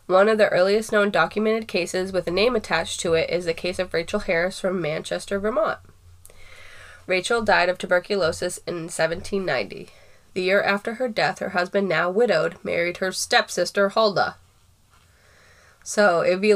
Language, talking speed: English, 160 wpm